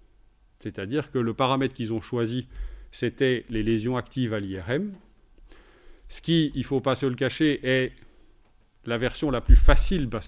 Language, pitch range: French, 115-160 Hz